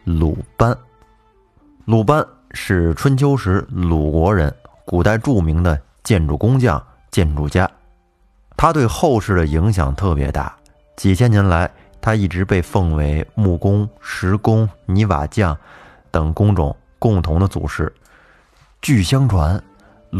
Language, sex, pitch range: Chinese, male, 80-115 Hz